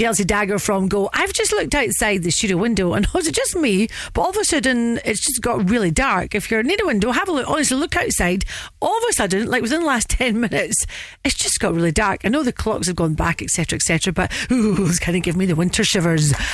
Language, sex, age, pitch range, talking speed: English, female, 40-59, 170-225 Hz, 260 wpm